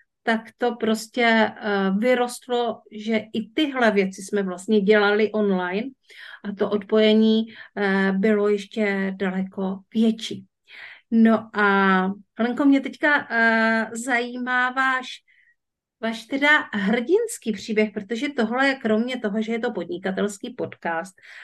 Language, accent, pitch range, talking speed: Czech, native, 200-230 Hz, 110 wpm